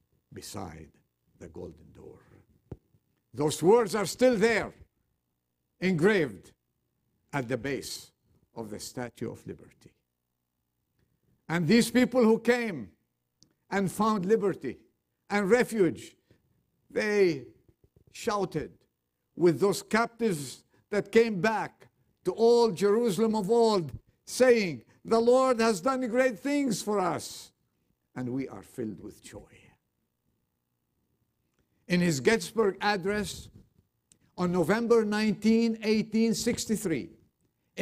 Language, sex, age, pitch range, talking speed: English, male, 50-69, 160-225 Hz, 100 wpm